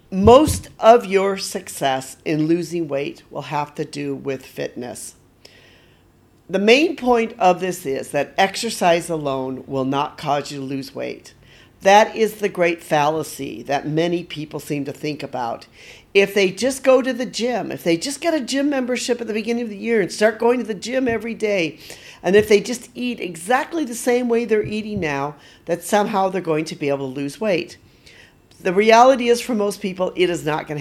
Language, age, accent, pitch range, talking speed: English, 50-69, American, 145-215 Hz, 195 wpm